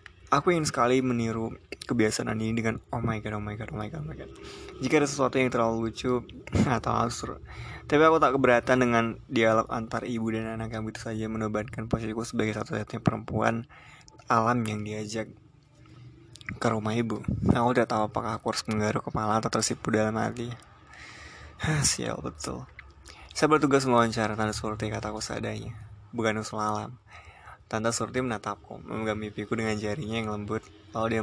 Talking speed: 165 wpm